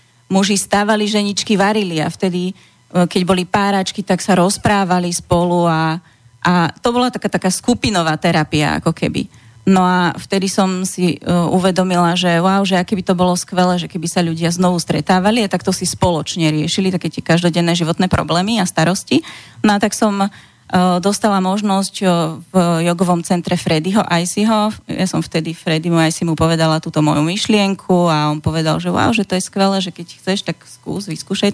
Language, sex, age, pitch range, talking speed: Slovak, female, 30-49, 165-190 Hz, 170 wpm